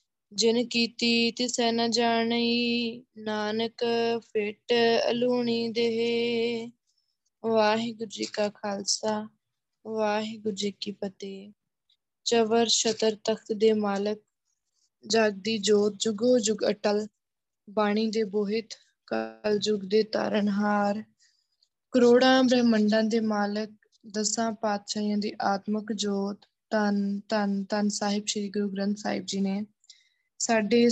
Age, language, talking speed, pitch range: 20-39, Punjabi, 105 wpm, 205-230 Hz